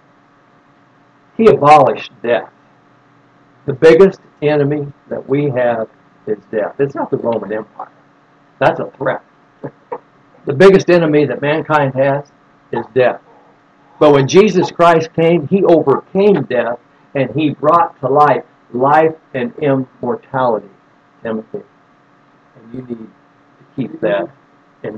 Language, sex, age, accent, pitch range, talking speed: English, male, 60-79, American, 120-170 Hz, 125 wpm